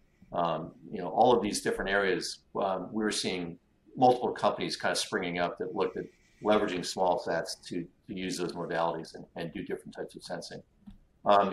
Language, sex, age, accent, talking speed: English, male, 50-69, American, 195 wpm